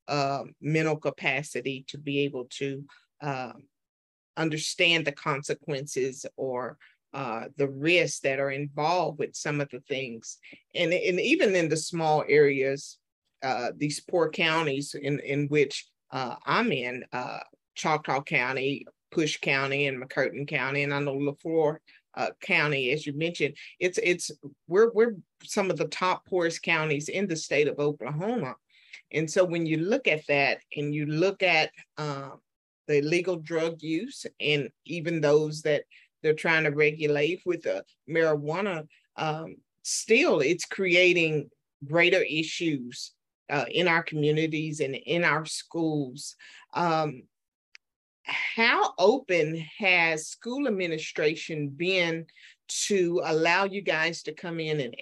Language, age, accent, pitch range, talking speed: English, 40-59, American, 145-170 Hz, 140 wpm